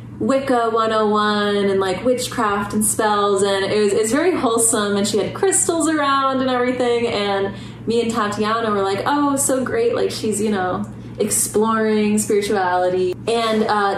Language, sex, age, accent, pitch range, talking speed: English, female, 20-39, American, 185-235 Hz, 160 wpm